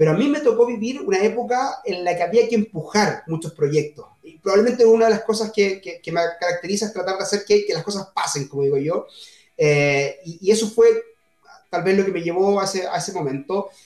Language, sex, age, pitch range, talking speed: Spanish, male, 30-49, 170-215 Hz, 240 wpm